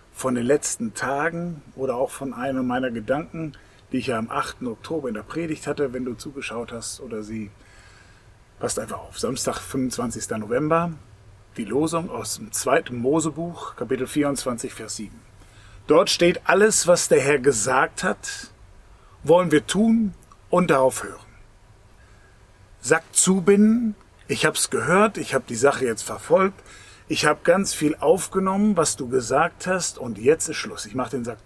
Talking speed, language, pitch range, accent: 165 wpm, German, 105-165 Hz, German